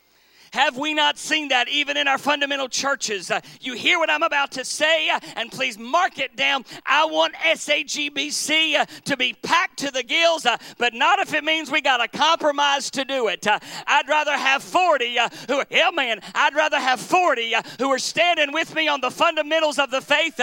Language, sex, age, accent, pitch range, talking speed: English, male, 50-69, American, 210-300 Hz, 215 wpm